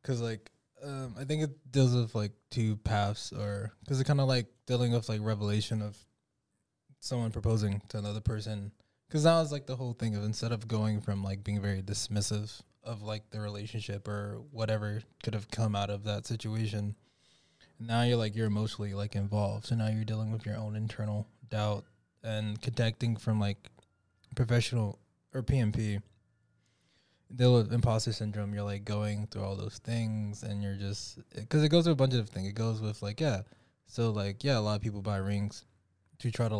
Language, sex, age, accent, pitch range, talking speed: English, male, 20-39, American, 105-115 Hz, 195 wpm